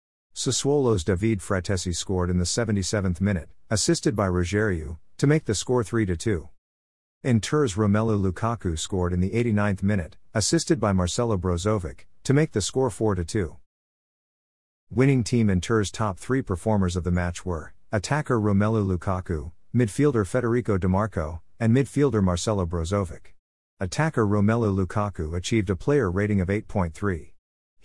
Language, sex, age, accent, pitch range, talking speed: English, male, 50-69, American, 90-115 Hz, 140 wpm